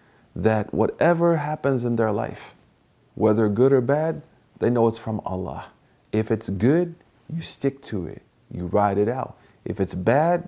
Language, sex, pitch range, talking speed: English, male, 100-115 Hz, 165 wpm